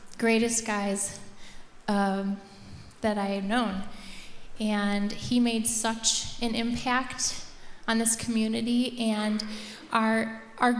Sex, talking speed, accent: female, 105 wpm, American